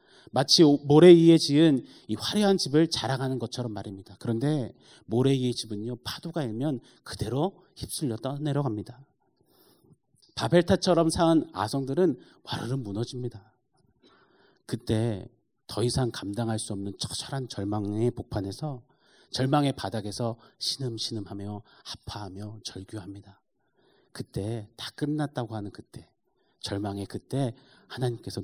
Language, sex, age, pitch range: Korean, male, 40-59, 105-135 Hz